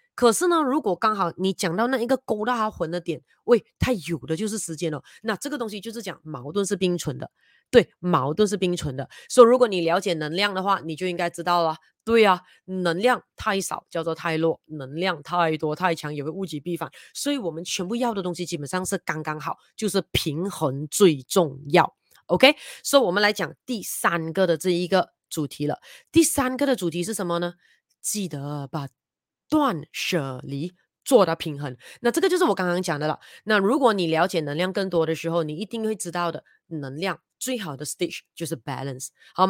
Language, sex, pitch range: Chinese, female, 160-225 Hz